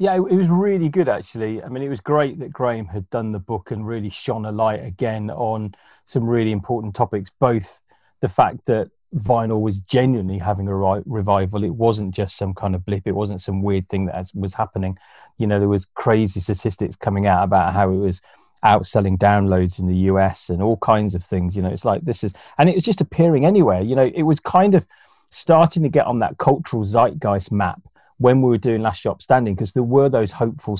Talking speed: 220 wpm